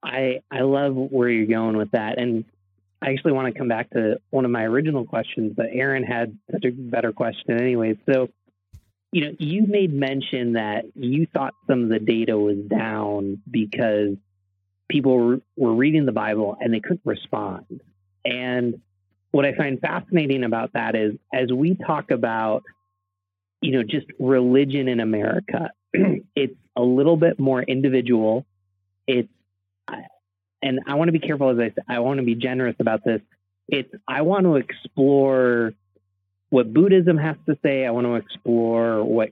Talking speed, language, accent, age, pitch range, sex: 170 wpm, English, American, 30-49, 110-140 Hz, male